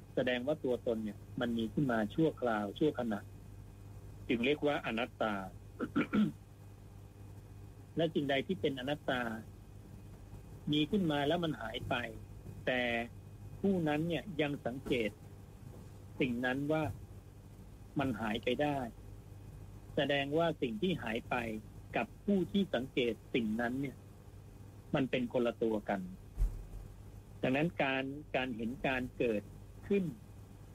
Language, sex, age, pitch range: Thai, male, 60-79, 100-140 Hz